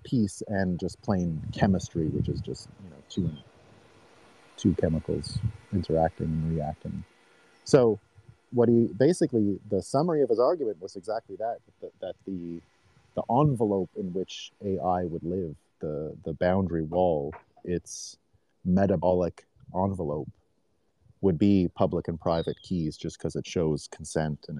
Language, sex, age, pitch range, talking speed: English, male, 30-49, 90-110 Hz, 140 wpm